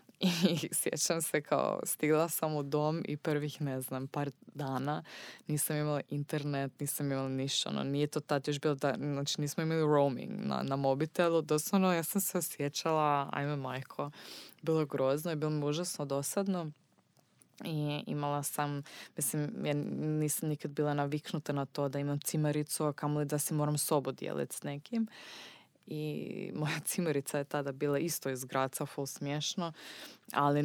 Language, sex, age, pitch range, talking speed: Croatian, female, 20-39, 140-155 Hz, 160 wpm